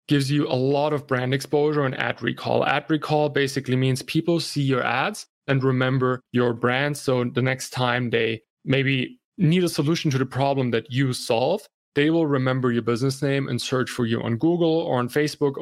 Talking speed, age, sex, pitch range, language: 200 wpm, 20-39, male, 125-155 Hz, English